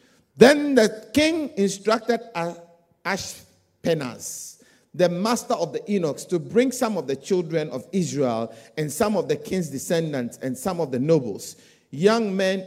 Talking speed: 145 wpm